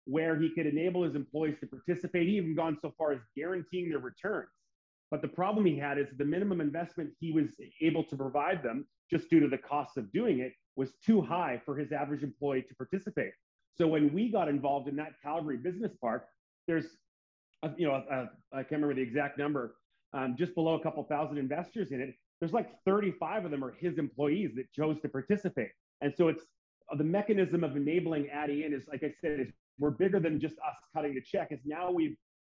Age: 30-49